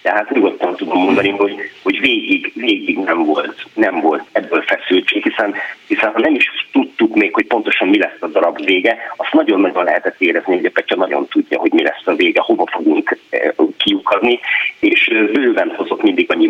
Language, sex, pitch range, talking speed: Hungarian, male, 315-380 Hz, 180 wpm